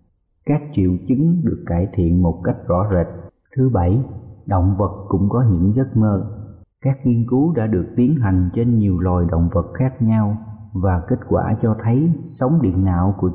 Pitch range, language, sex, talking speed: 95-120 Hz, Vietnamese, male, 190 wpm